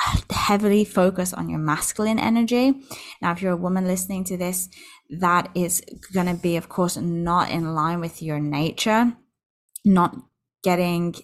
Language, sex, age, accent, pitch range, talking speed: English, female, 20-39, British, 155-185 Hz, 155 wpm